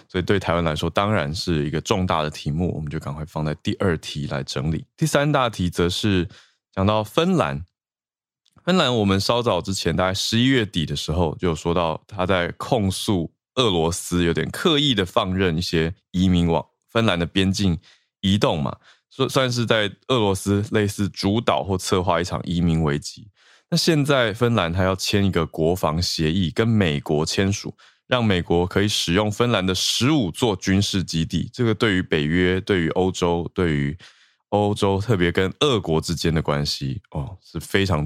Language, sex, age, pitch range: Chinese, male, 20-39, 85-105 Hz